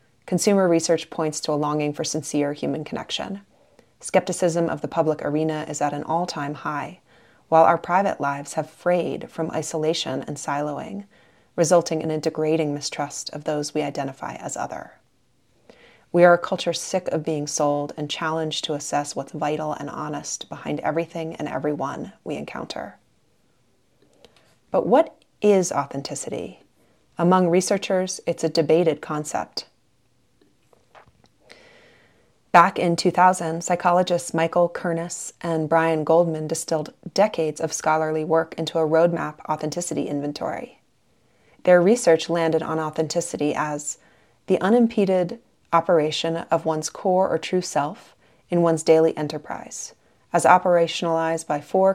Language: English